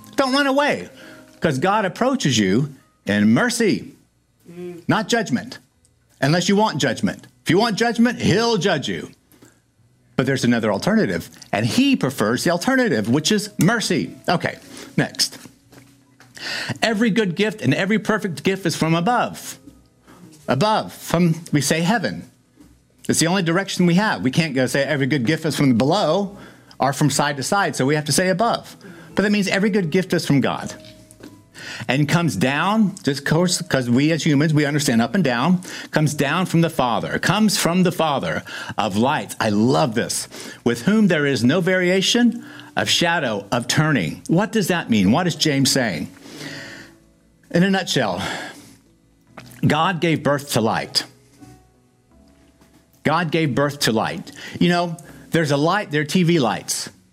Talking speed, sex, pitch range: 165 wpm, male, 140-200 Hz